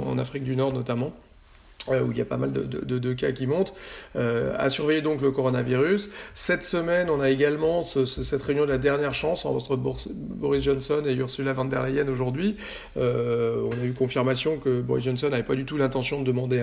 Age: 40-59